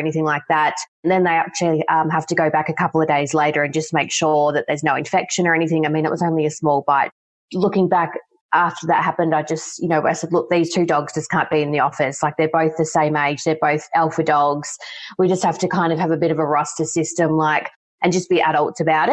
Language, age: English, 20-39